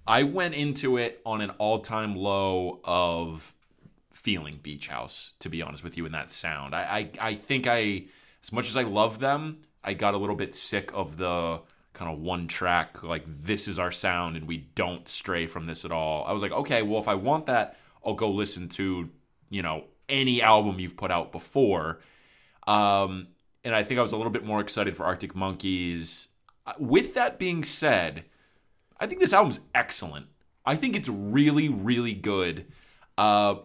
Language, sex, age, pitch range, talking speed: English, male, 20-39, 90-120 Hz, 190 wpm